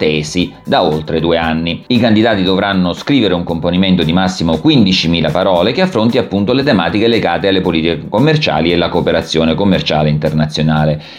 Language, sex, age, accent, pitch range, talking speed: Italian, male, 30-49, native, 85-100 Hz, 155 wpm